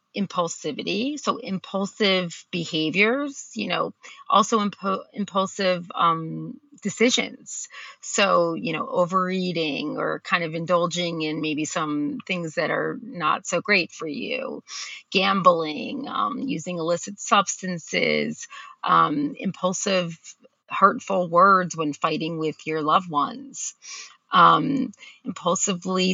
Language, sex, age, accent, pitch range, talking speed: English, female, 30-49, American, 165-230 Hz, 105 wpm